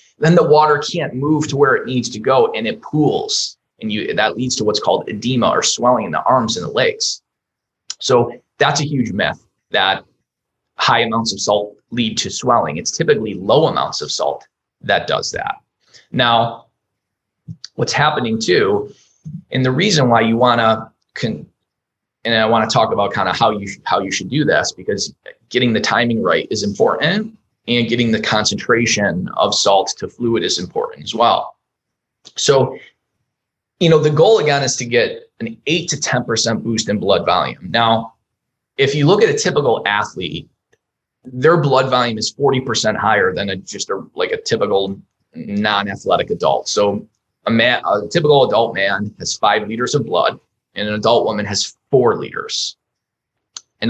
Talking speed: 175 wpm